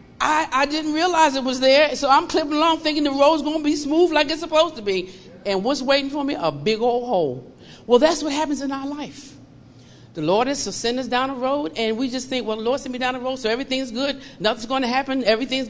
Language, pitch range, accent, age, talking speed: English, 190-265 Hz, American, 50-69, 260 wpm